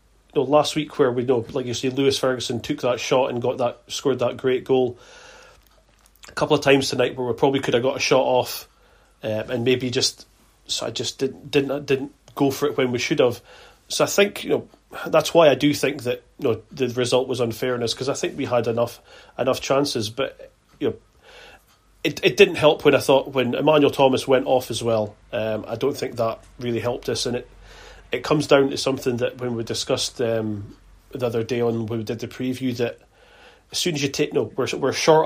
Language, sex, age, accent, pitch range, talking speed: English, male, 30-49, British, 120-140 Hz, 230 wpm